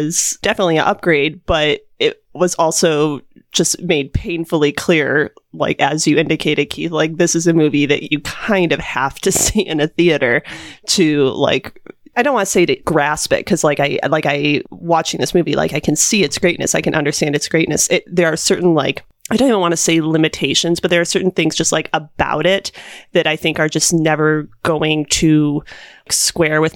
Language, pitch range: English, 150-185 Hz